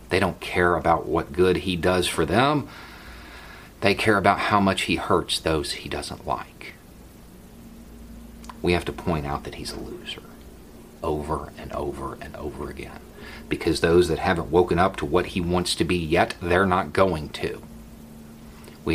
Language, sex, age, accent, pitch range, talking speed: English, male, 40-59, American, 70-95 Hz, 170 wpm